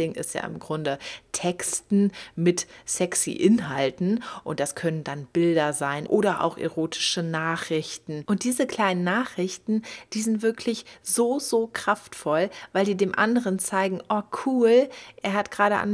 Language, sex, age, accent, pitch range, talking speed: German, female, 30-49, German, 165-210 Hz, 145 wpm